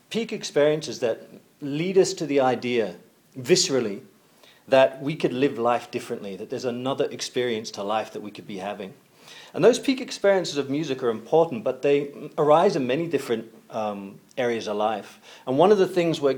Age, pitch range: 40-59, 115-145 Hz